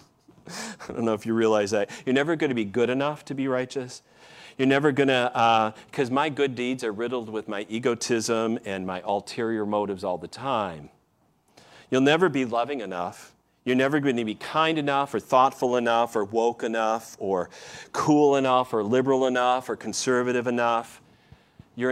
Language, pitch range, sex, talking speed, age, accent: English, 105-130 Hz, male, 180 wpm, 40-59, American